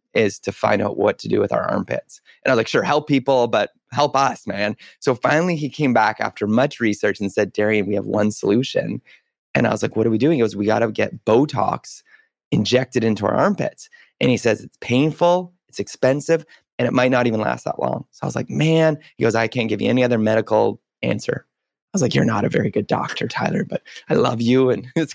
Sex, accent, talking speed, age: male, American, 240 wpm, 20-39